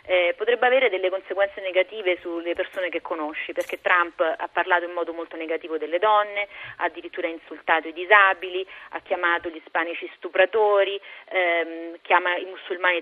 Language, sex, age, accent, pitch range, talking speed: Italian, female, 30-49, native, 170-220 Hz, 155 wpm